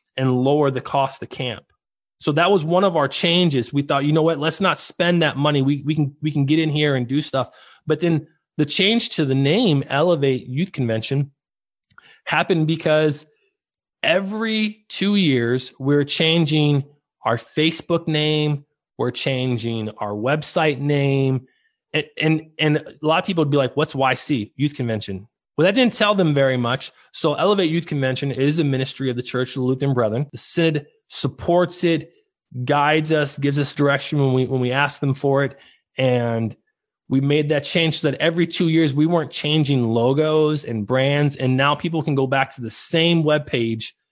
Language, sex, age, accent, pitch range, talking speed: English, male, 20-39, American, 130-165 Hz, 185 wpm